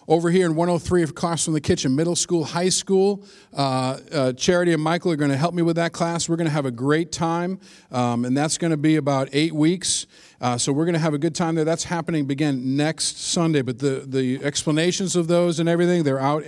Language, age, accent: English, 50-69, American